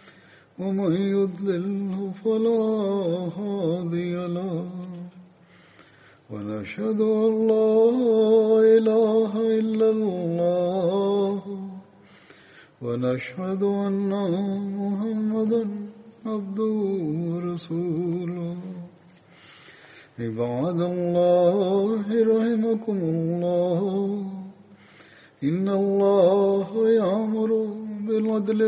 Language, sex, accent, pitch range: Tamil, male, native, 175-215 Hz